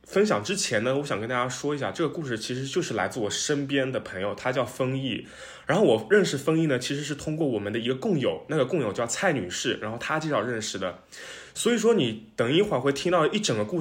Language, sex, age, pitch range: Chinese, male, 20-39, 120-175 Hz